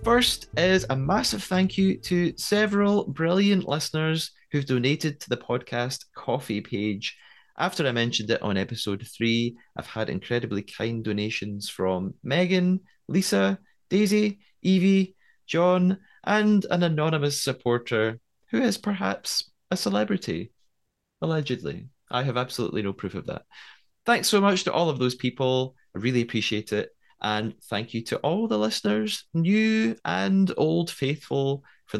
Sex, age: male, 30-49